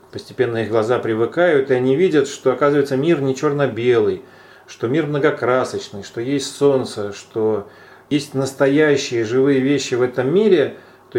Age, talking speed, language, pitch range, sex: 40-59, 145 wpm, Russian, 125-170 Hz, male